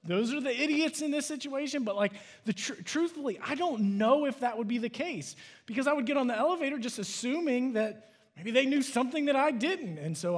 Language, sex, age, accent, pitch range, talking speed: English, male, 30-49, American, 185-245 Hz, 230 wpm